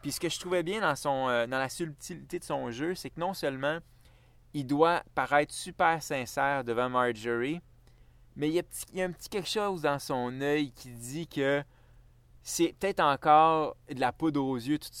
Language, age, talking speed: French, 30-49, 210 wpm